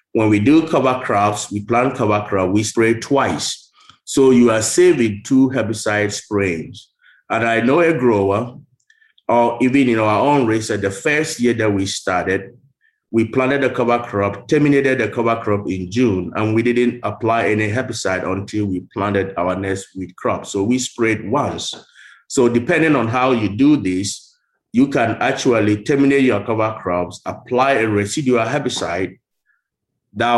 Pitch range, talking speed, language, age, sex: 100-125 Hz, 165 wpm, English, 30-49, male